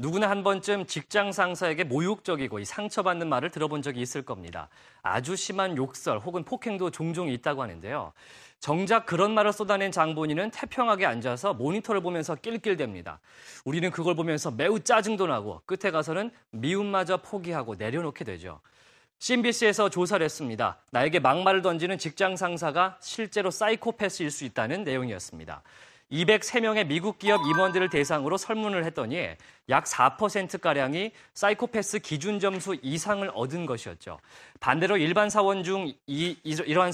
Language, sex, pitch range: Korean, male, 150-205 Hz